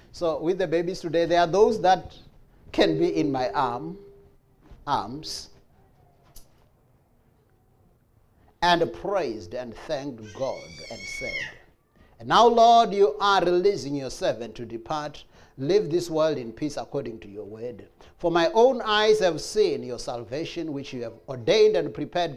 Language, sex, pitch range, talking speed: English, male, 125-205 Hz, 145 wpm